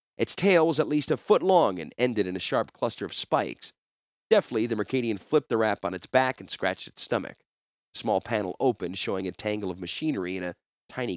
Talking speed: 220 wpm